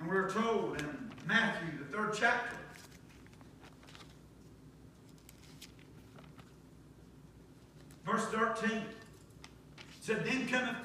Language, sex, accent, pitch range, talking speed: English, male, American, 140-235 Hz, 75 wpm